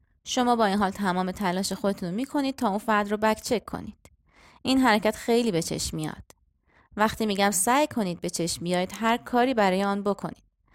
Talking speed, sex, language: 180 wpm, female, Persian